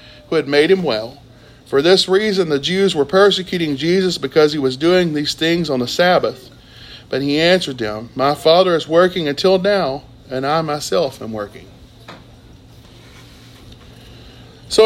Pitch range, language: 125-210 Hz, English